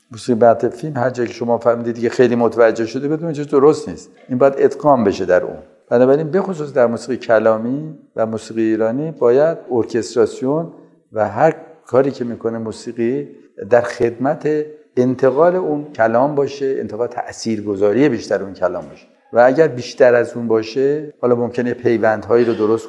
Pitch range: 115-155 Hz